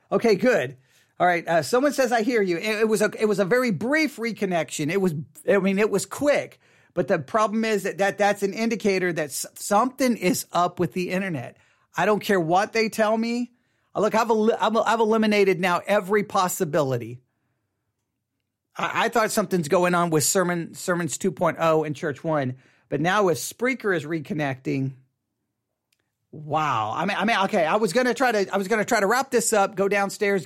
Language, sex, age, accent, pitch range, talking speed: English, male, 40-59, American, 145-210 Hz, 195 wpm